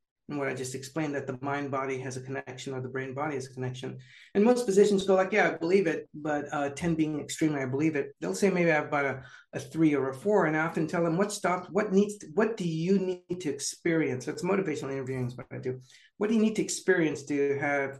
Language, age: English, 60-79